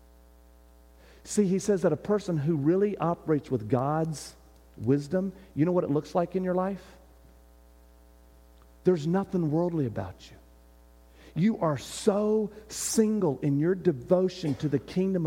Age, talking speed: 50-69, 140 wpm